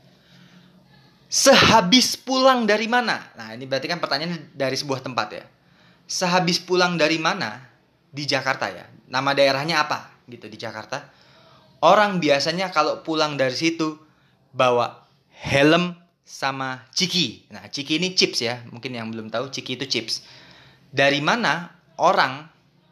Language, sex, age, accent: Indonesian, male, 20-39, native